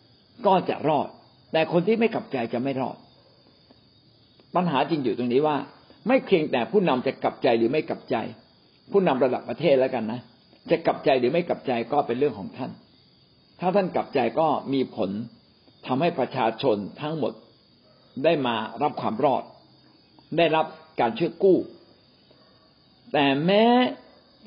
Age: 60-79